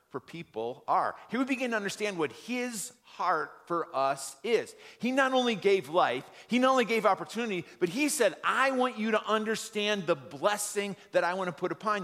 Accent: American